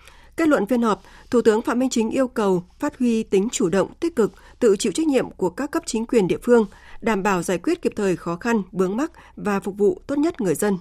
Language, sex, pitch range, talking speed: Vietnamese, female, 185-245 Hz, 255 wpm